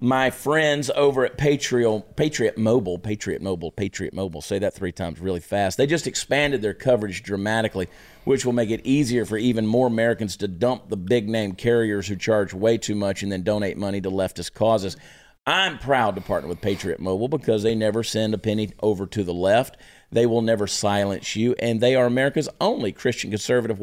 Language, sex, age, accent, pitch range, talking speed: English, male, 40-59, American, 100-125 Hz, 195 wpm